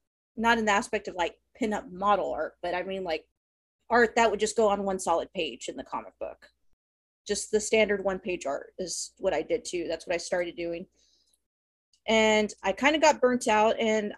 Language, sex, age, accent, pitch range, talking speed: English, female, 30-49, American, 185-230 Hz, 205 wpm